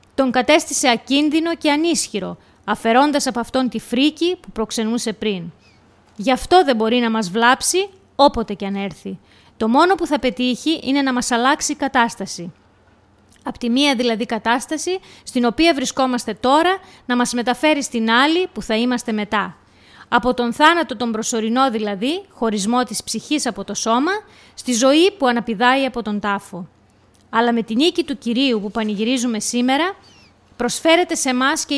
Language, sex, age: Greek, female, 20-39